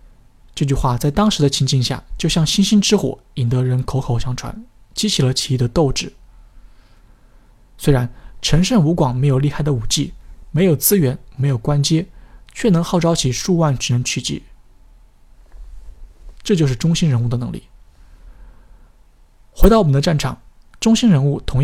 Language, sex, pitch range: Chinese, male, 125-160 Hz